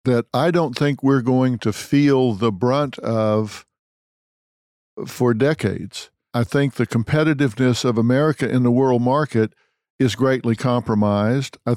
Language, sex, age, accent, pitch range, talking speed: English, male, 50-69, American, 115-130 Hz, 140 wpm